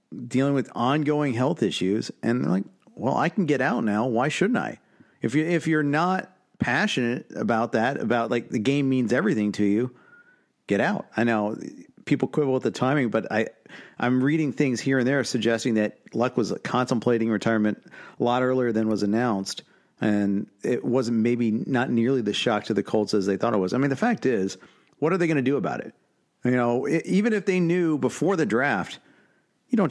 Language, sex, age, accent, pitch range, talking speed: English, male, 50-69, American, 110-155 Hz, 205 wpm